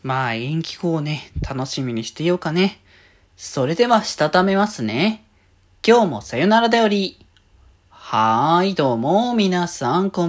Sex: male